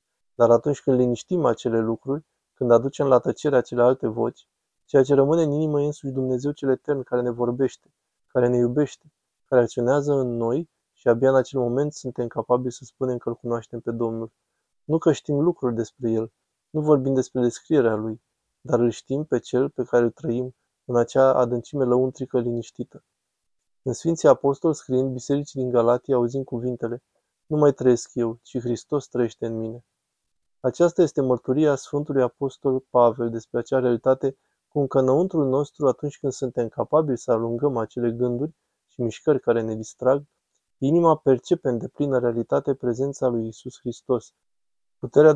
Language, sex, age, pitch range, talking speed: Romanian, male, 20-39, 120-140 Hz, 165 wpm